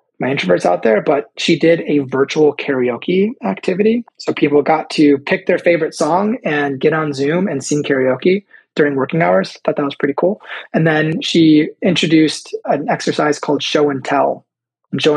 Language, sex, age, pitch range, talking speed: English, male, 20-39, 140-180 Hz, 180 wpm